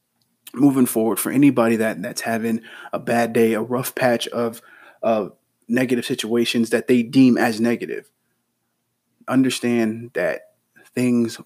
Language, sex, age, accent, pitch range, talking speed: English, male, 30-49, American, 110-120 Hz, 130 wpm